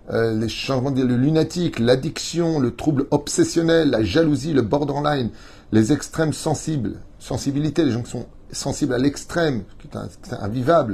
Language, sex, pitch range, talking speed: French, male, 110-145 Hz, 165 wpm